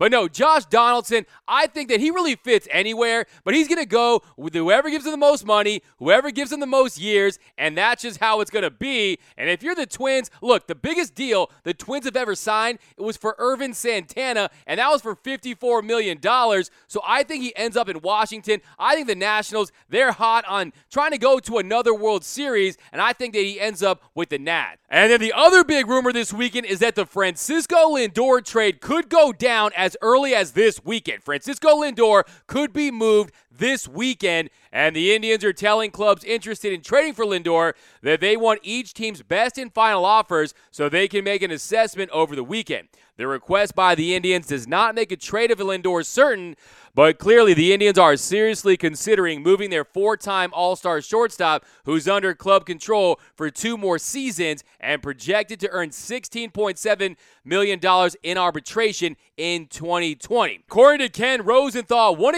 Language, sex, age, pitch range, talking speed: English, male, 20-39, 185-250 Hz, 195 wpm